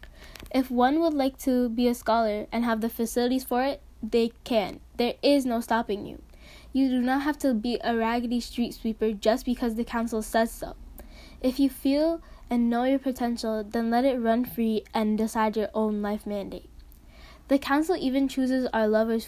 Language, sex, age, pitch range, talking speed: English, female, 10-29, 220-260 Hz, 190 wpm